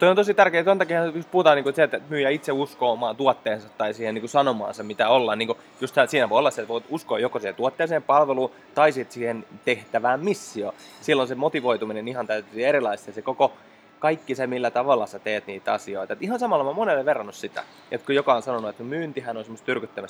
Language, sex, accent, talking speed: English, male, Finnish, 190 wpm